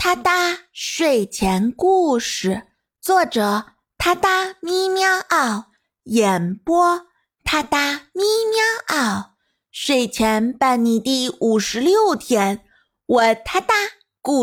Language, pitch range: Chinese, 210-350 Hz